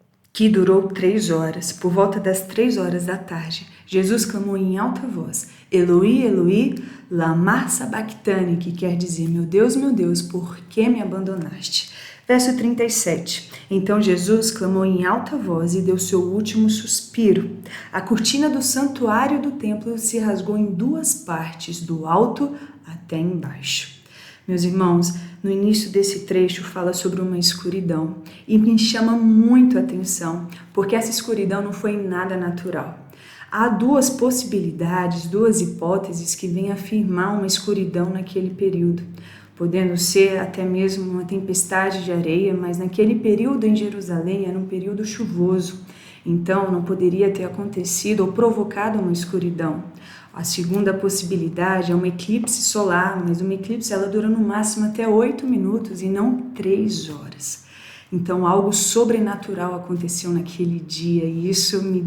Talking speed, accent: 145 wpm, Brazilian